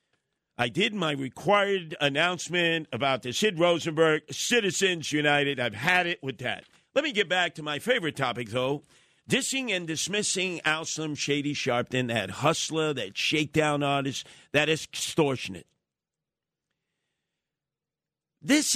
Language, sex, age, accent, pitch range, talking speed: English, male, 50-69, American, 140-195 Hz, 130 wpm